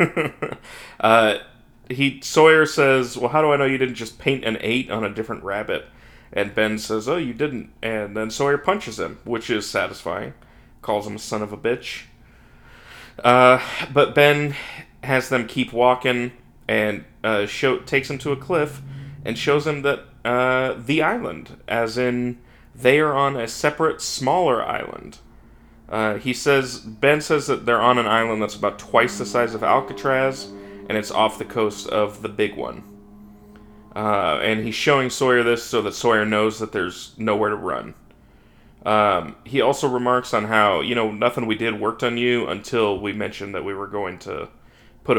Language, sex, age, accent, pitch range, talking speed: English, male, 30-49, American, 110-130 Hz, 180 wpm